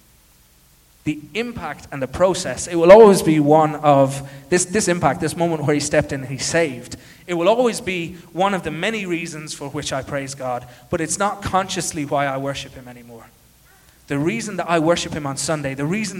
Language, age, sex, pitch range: English, 30-49, male, 135-215 Hz